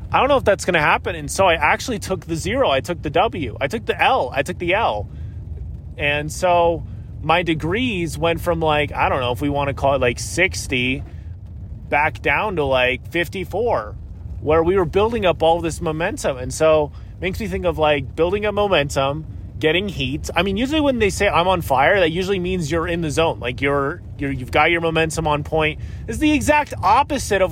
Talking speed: 225 wpm